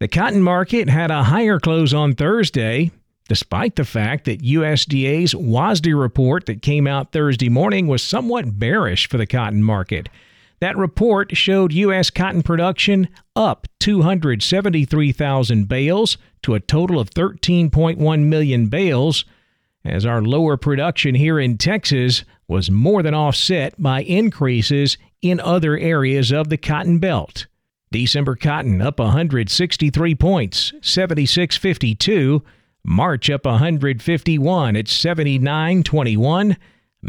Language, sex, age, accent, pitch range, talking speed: English, male, 50-69, American, 125-175 Hz, 120 wpm